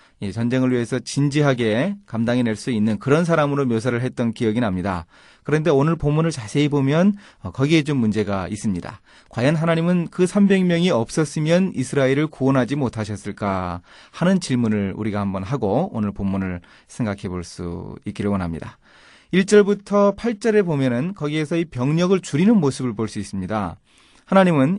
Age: 30-49